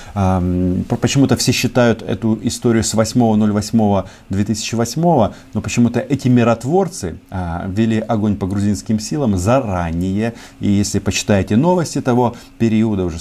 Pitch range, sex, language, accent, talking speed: 95-130 Hz, male, Russian, native, 110 wpm